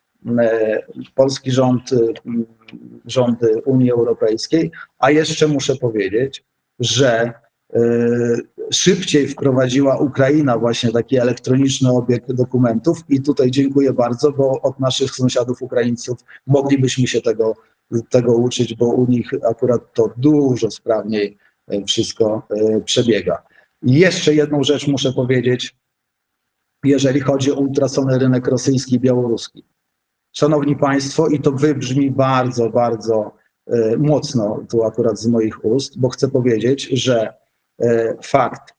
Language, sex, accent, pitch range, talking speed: Polish, male, native, 115-140 Hz, 110 wpm